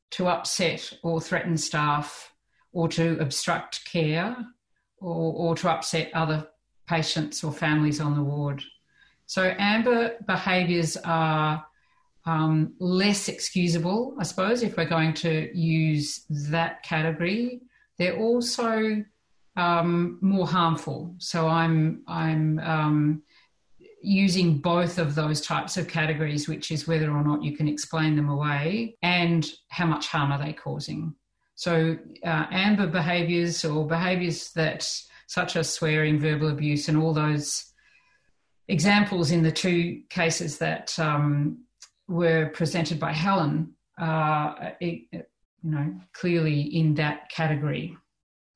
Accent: Australian